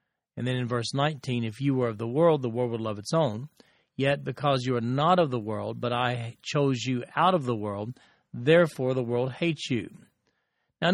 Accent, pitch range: American, 125-155 Hz